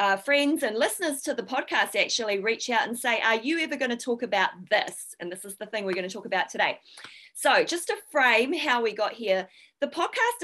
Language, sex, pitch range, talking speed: English, female, 195-250 Hz, 235 wpm